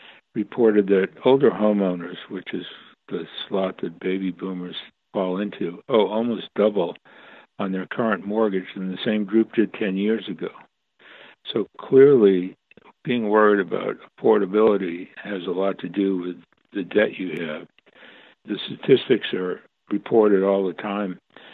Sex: male